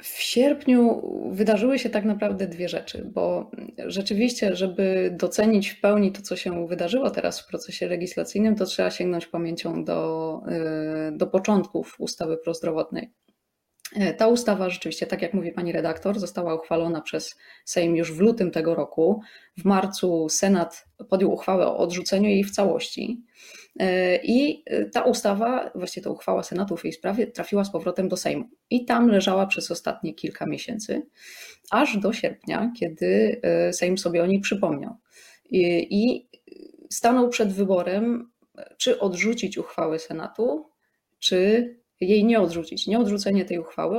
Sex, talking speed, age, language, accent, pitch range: female, 140 wpm, 20-39, Polish, native, 170-215 Hz